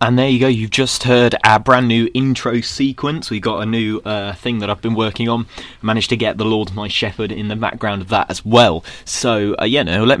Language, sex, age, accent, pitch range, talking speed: English, male, 20-39, British, 100-125 Hz, 260 wpm